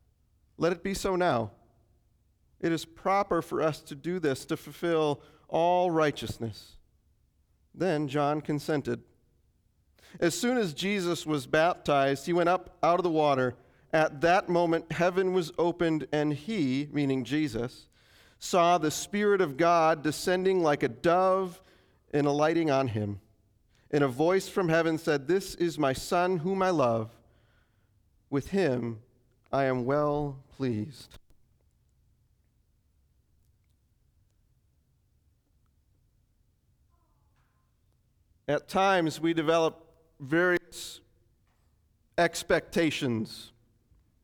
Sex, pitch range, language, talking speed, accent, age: male, 115-175 Hz, English, 110 wpm, American, 40-59